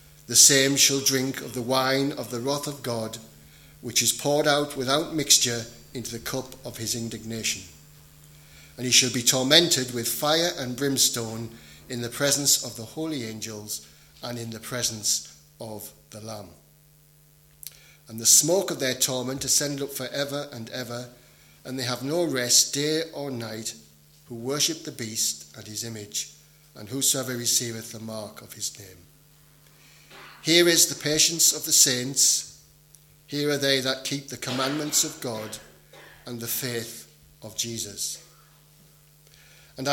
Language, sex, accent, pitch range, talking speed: English, male, British, 115-145 Hz, 155 wpm